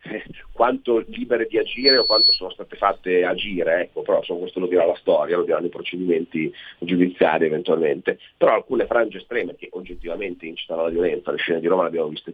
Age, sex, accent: 40-59, male, native